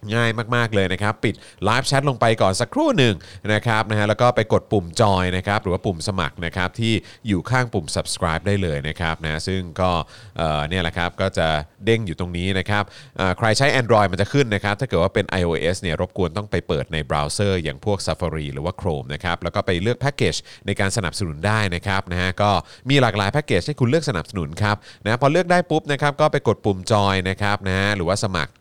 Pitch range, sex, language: 90-120 Hz, male, Thai